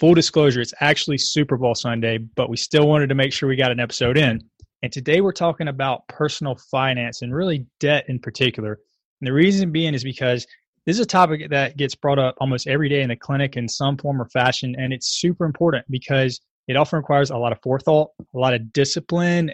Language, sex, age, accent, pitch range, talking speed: English, male, 20-39, American, 125-150 Hz, 220 wpm